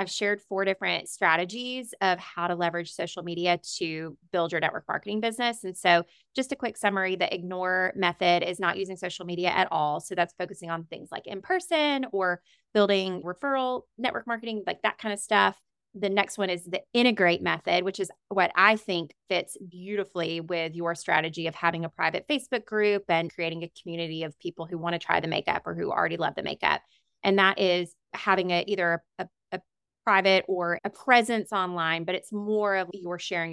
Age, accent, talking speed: 20-39, American, 200 wpm